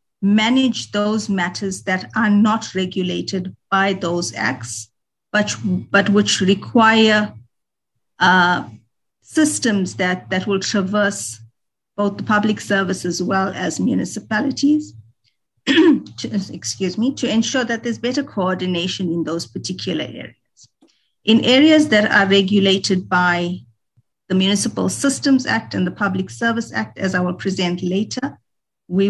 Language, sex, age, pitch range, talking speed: English, female, 50-69, 175-215 Hz, 130 wpm